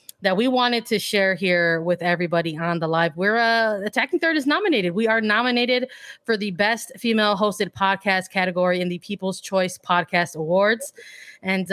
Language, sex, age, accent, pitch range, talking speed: English, female, 20-39, American, 180-220 Hz, 175 wpm